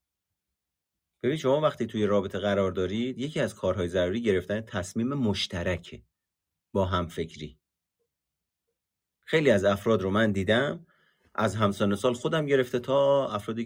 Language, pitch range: Persian, 95-160 Hz